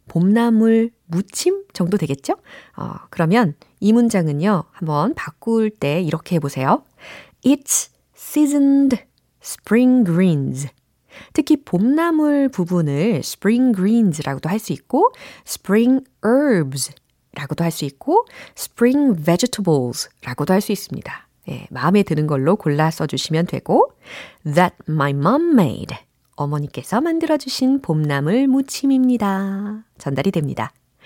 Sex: female